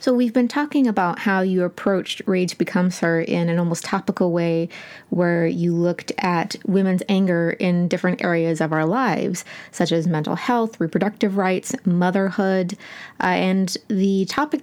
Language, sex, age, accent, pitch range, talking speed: English, female, 20-39, American, 170-205 Hz, 160 wpm